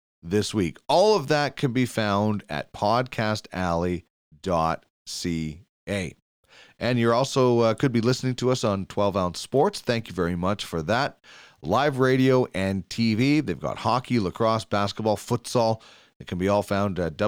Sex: male